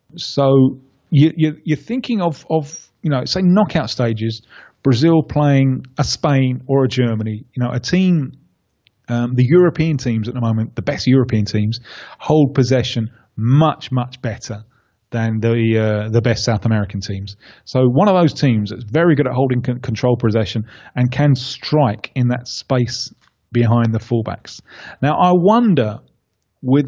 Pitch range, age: 115-150 Hz, 30-49